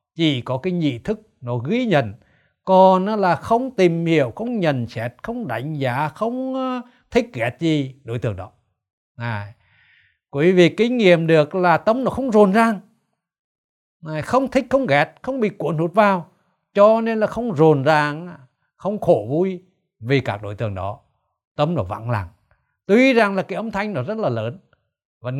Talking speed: 180 wpm